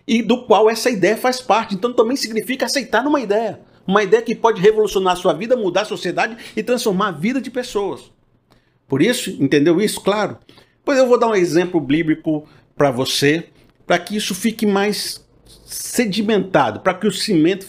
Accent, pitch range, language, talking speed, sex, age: Brazilian, 140-205 Hz, Portuguese, 185 wpm, male, 50-69